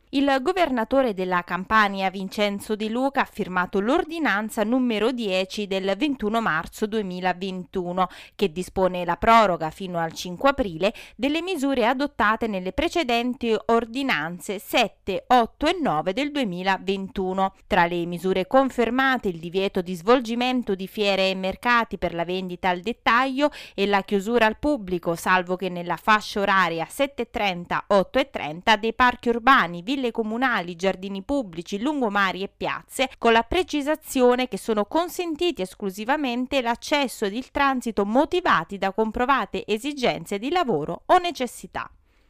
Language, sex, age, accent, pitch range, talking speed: Italian, female, 30-49, native, 195-270 Hz, 130 wpm